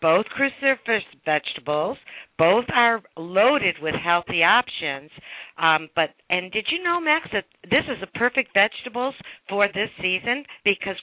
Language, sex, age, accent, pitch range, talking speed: English, female, 60-79, American, 165-235 Hz, 140 wpm